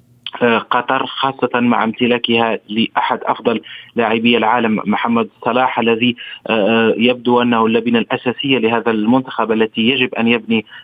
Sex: male